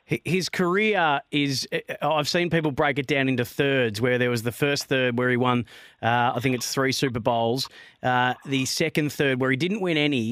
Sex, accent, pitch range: male, Australian, 125-150 Hz